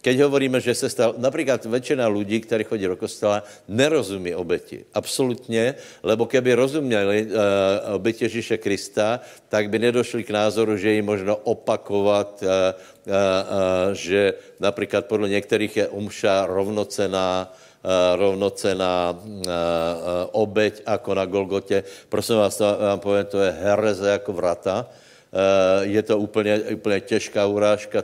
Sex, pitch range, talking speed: male, 100-115 Hz, 135 wpm